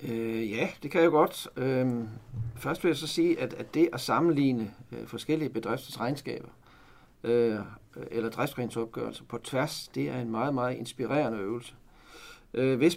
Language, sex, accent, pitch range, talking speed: Danish, male, native, 120-155 Hz, 135 wpm